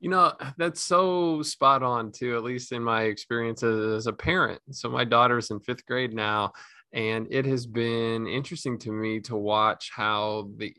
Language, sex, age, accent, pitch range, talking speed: English, male, 20-39, American, 110-135 Hz, 190 wpm